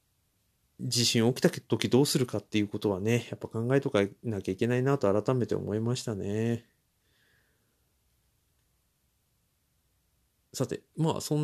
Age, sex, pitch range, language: 40-59, male, 105-160 Hz, Japanese